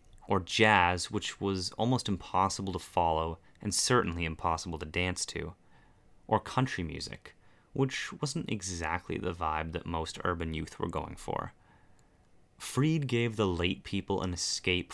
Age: 30-49